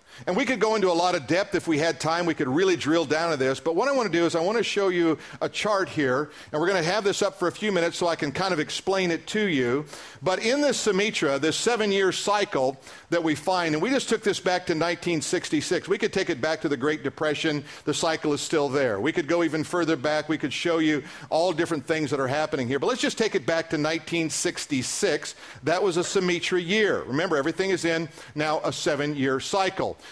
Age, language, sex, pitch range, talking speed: 50-69, English, male, 145-180 Hz, 255 wpm